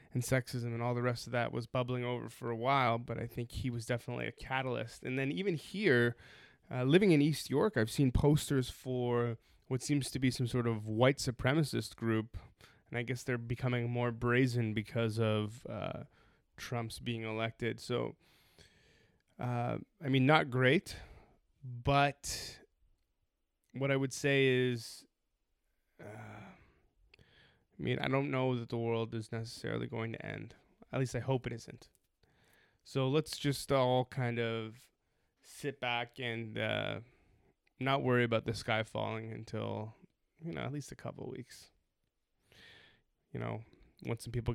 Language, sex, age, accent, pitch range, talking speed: English, male, 20-39, American, 115-130 Hz, 160 wpm